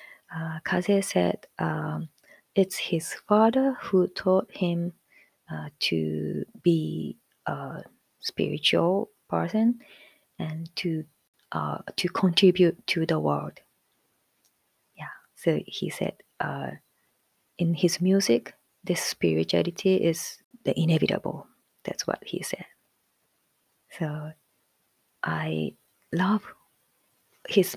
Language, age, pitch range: Japanese, 30-49, 160-195 Hz